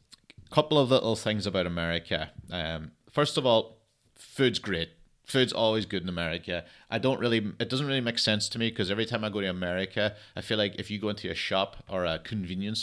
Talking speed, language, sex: 215 wpm, English, male